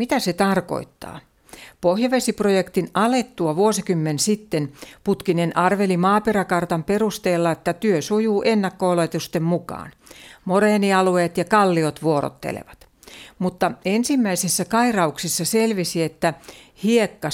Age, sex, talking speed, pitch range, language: 60-79, female, 90 wpm, 165-210 Hz, Finnish